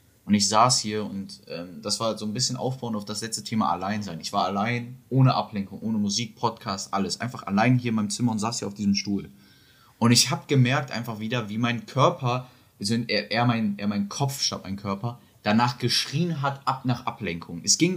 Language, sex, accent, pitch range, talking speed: German, male, German, 105-140 Hz, 205 wpm